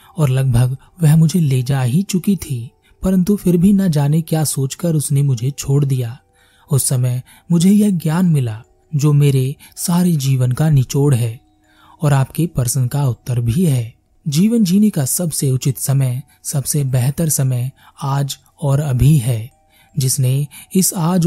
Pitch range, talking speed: 125-160 Hz, 130 wpm